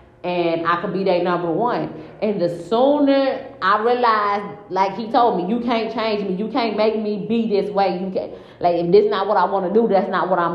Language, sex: English, female